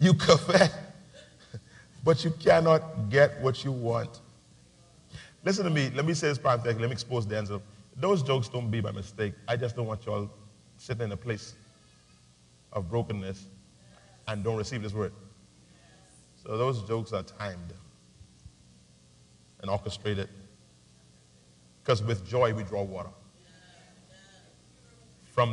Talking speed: 140 wpm